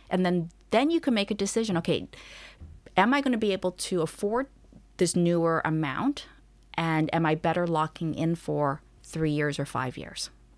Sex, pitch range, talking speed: female, 155-185 Hz, 180 wpm